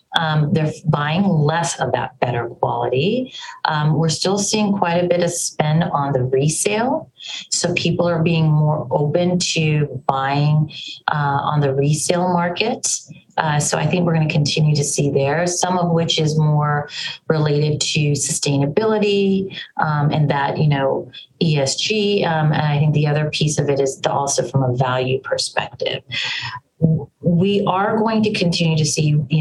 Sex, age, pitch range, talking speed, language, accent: female, 30-49, 140-165 Hz, 165 wpm, English, American